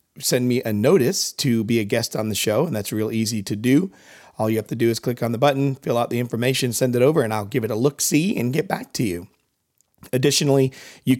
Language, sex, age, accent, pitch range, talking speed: English, male, 40-59, American, 110-135 Hz, 250 wpm